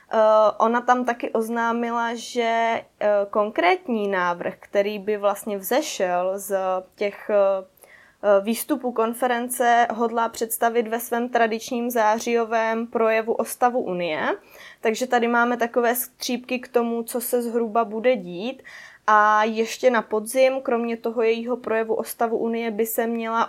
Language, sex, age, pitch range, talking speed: Czech, female, 20-39, 205-235 Hz, 130 wpm